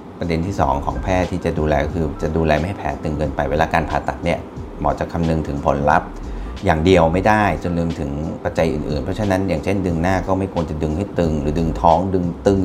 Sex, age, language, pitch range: male, 30-49, Thai, 75-90 Hz